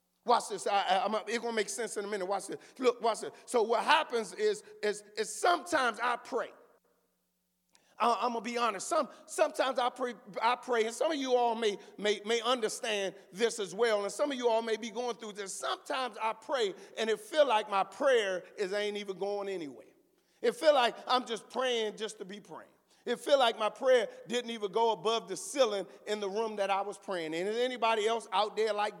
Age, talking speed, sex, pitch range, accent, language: 40-59, 220 wpm, male, 210-265 Hz, American, English